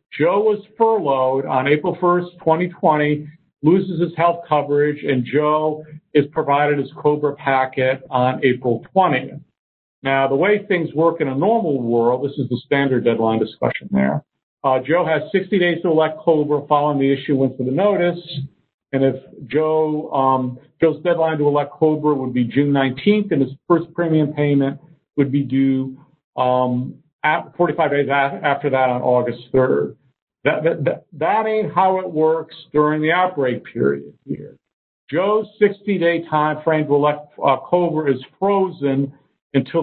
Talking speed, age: 155 wpm, 50-69